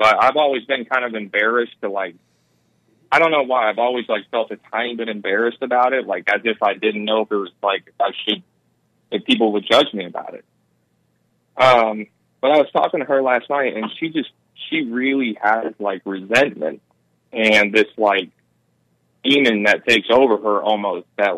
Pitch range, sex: 95-135 Hz, male